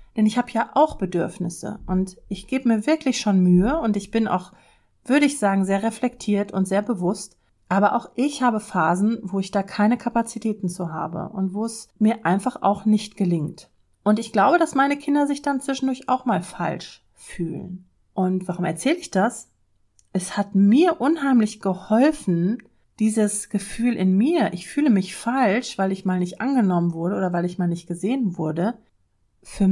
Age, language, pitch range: 40-59, German, 180-235 Hz